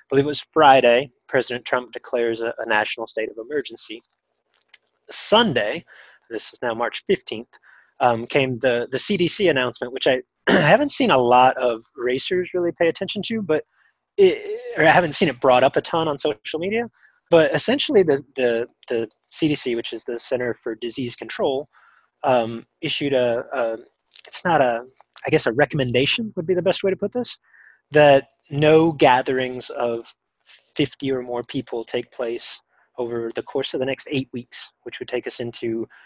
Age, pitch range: 30-49, 120-165 Hz